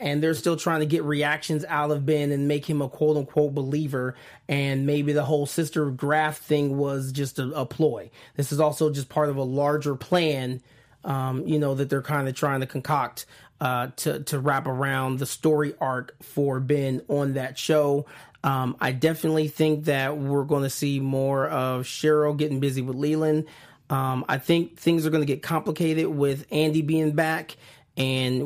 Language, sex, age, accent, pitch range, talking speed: English, male, 30-49, American, 135-155 Hz, 195 wpm